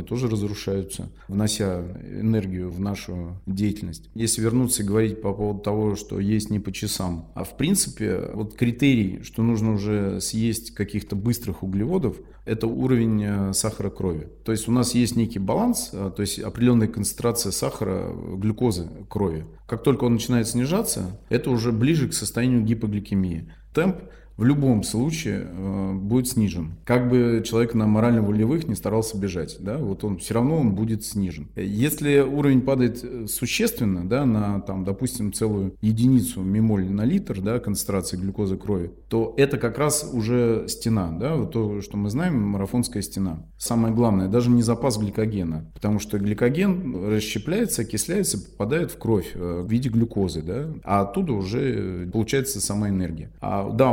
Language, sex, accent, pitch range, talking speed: Russian, male, native, 95-120 Hz, 150 wpm